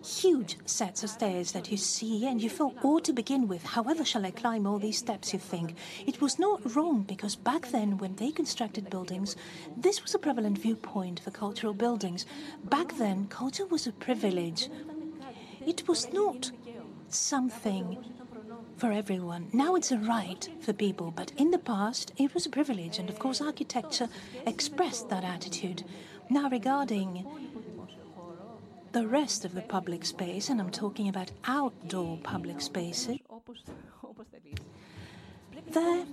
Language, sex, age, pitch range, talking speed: Greek, female, 40-59, 190-265 Hz, 150 wpm